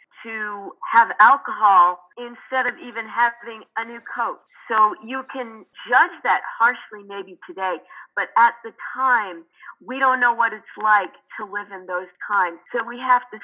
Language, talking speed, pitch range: English, 165 wpm, 185-250 Hz